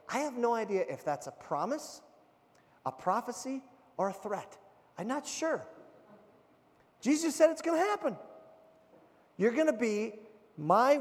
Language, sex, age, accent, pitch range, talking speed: English, male, 30-49, American, 190-305 Hz, 145 wpm